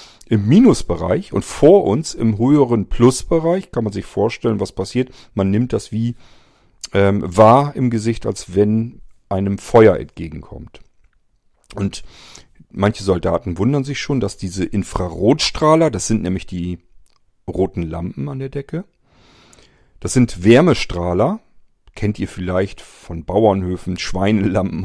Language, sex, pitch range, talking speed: German, male, 90-115 Hz, 130 wpm